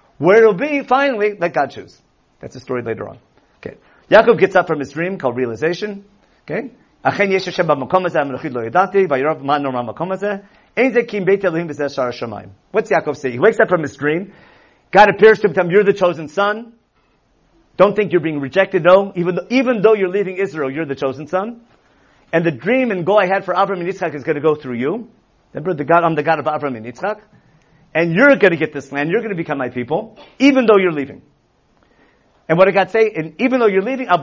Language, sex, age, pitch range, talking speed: English, male, 50-69, 155-215 Hz, 195 wpm